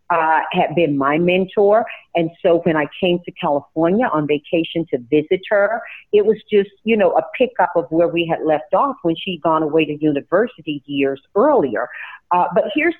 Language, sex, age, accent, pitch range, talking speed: English, female, 50-69, American, 155-190 Hz, 190 wpm